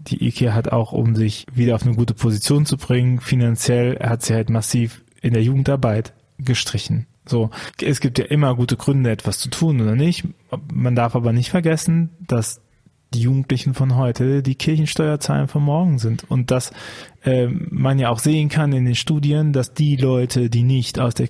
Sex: male